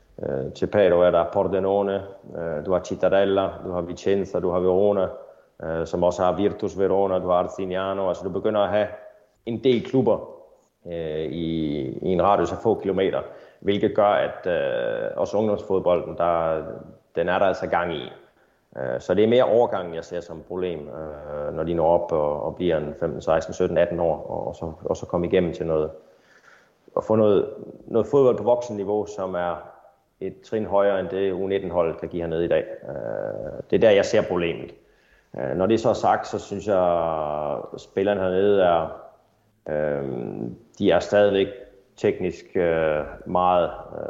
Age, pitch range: 30-49, 85-105 Hz